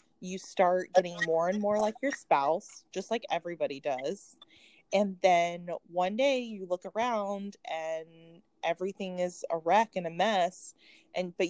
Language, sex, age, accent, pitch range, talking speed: English, female, 20-39, American, 155-205 Hz, 155 wpm